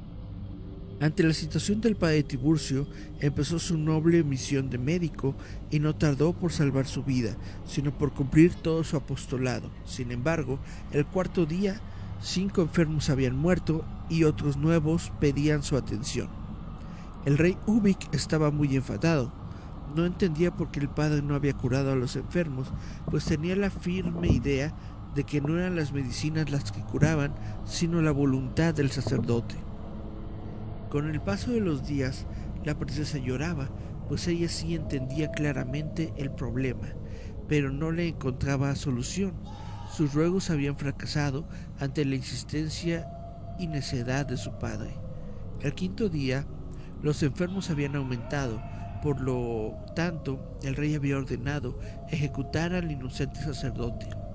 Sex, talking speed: male, 140 wpm